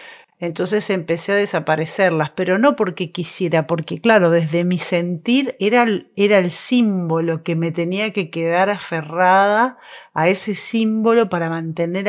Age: 40-59